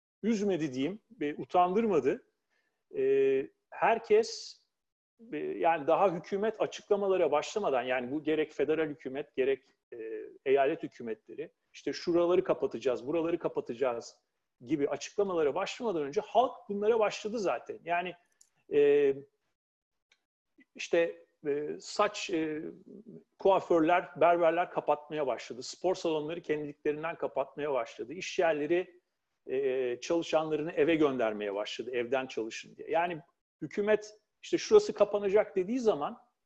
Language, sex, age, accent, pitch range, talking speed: Turkish, male, 40-59, native, 160-235 Hz, 105 wpm